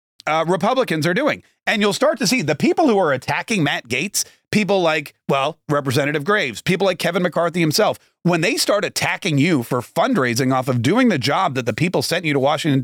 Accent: American